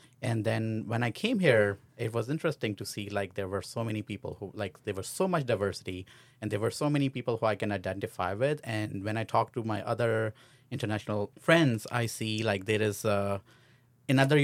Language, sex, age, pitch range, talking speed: English, male, 30-49, 105-125 Hz, 210 wpm